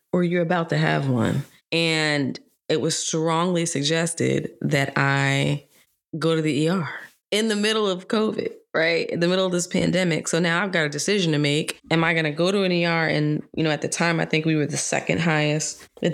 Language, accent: English, American